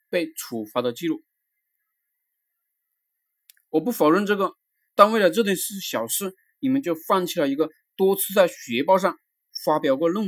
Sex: male